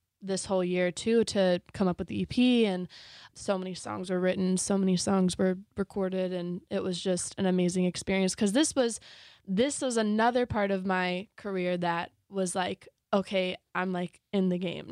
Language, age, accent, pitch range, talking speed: English, 20-39, American, 185-200 Hz, 190 wpm